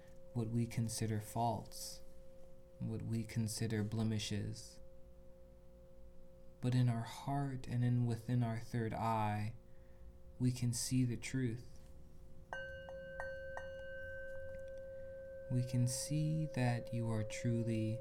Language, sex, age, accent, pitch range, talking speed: English, male, 20-39, American, 105-175 Hz, 100 wpm